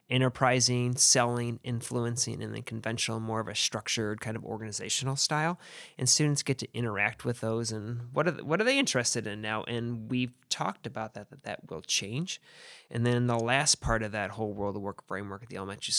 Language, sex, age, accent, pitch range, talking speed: English, male, 20-39, American, 105-135 Hz, 205 wpm